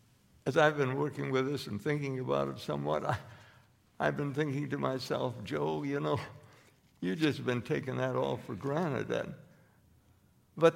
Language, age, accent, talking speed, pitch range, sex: English, 60-79, American, 160 wpm, 130-180 Hz, male